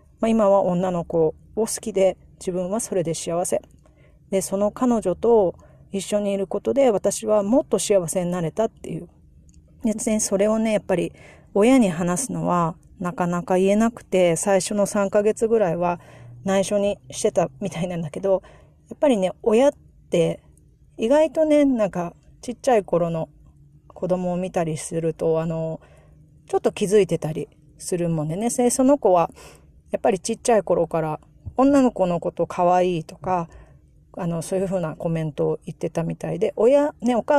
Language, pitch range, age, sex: Japanese, 170-220 Hz, 40-59, female